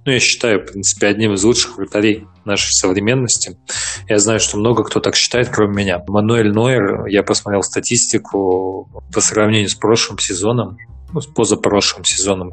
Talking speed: 165 wpm